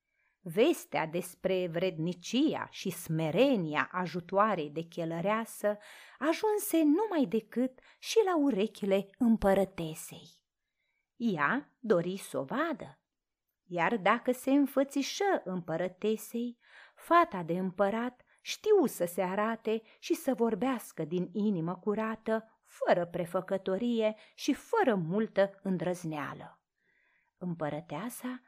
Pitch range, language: 180-275 Hz, Romanian